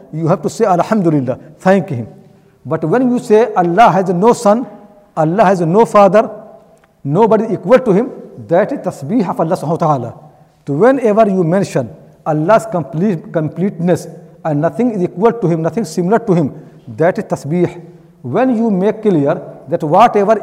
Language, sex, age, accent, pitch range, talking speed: English, male, 60-79, Indian, 165-215 Hz, 155 wpm